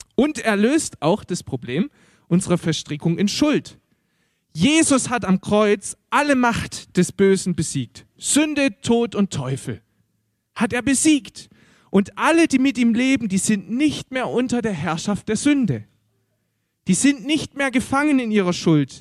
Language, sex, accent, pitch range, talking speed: German, male, German, 150-230 Hz, 155 wpm